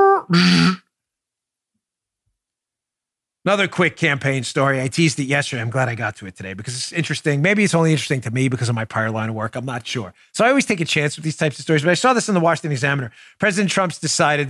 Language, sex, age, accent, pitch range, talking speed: English, male, 40-59, American, 135-210 Hz, 230 wpm